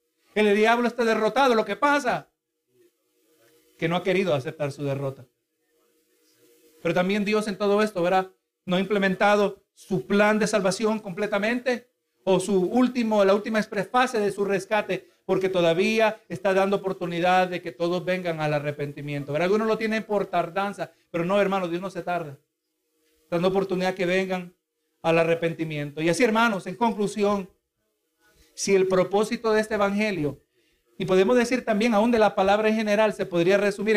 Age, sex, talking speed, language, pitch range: 50-69, male, 165 wpm, Spanish, 175-230 Hz